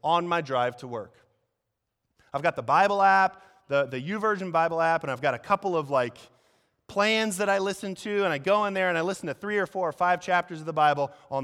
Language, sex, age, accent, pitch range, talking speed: English, male, 30-49, American, 145-200 Hz, 240 wpm